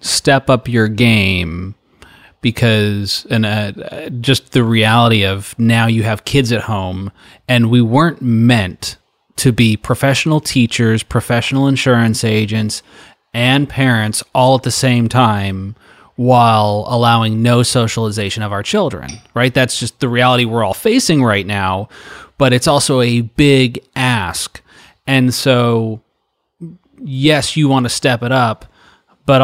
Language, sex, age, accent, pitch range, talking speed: English, male, 30-49, American, 110-130 Hz, 140 wpm